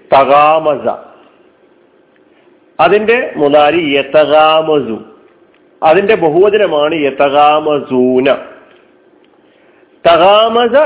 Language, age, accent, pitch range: Malayalam, 50-69, native, 150-205 Hz